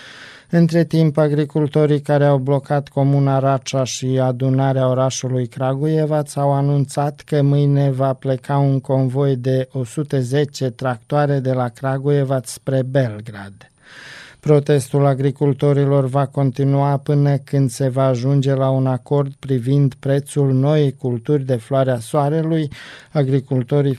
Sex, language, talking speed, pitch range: male, Romanian, 120 wpm, 130-145 Hz